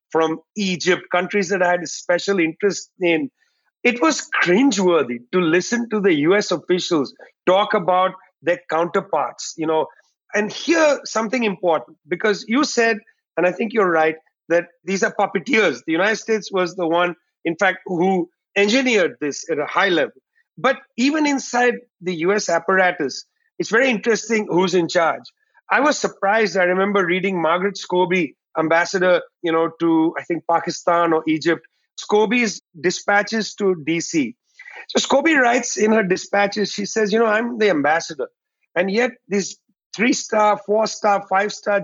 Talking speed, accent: 155 wpm, Indian